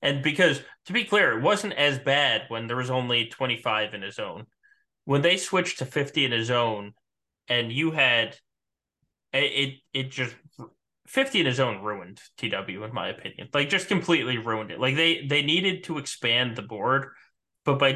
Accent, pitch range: American, 115-140 Hz